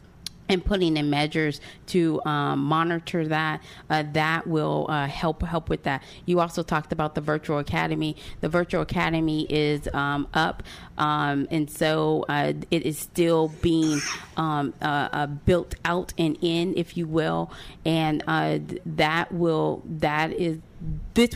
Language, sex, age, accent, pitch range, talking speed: English, female, 30-49, American, 140-165 Hz, 150 wpm